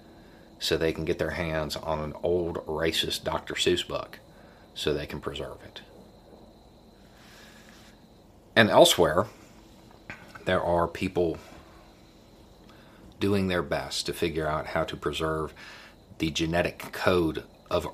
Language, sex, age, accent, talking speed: English, male, 40-59, American, 120 wpm